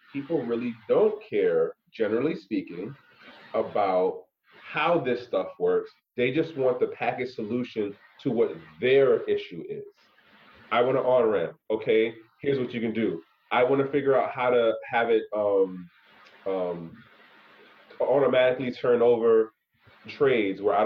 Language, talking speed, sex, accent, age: English, 145 wpm, male, American, 30-49